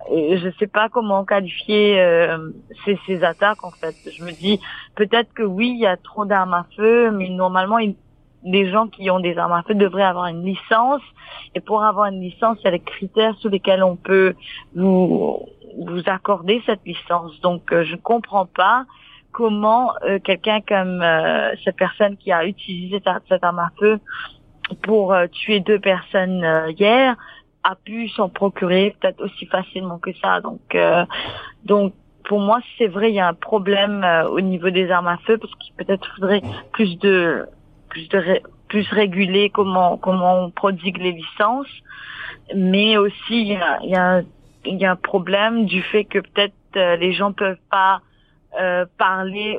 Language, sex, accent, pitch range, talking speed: French, female, French, 180-210 Hz, 185 wpm